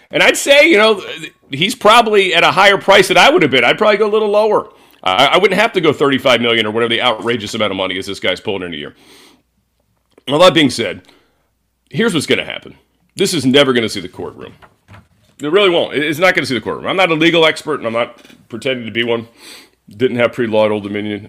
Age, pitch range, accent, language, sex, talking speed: 40-59, 105-135 Hz, American, English, male, 250 wpm